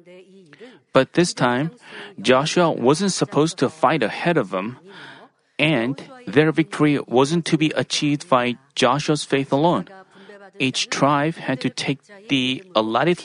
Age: 30-49